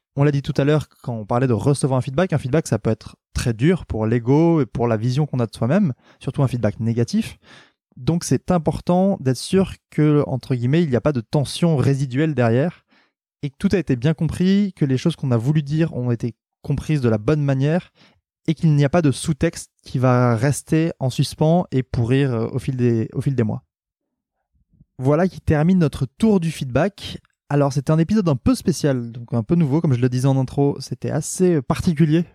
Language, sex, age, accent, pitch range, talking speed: French, male, 20-39, French, 130-165 Hz, 215 wpm